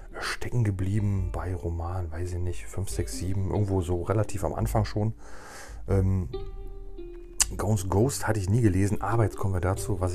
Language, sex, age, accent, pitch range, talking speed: German, male, 40-59, German, 85-95 Hz, 170 wpm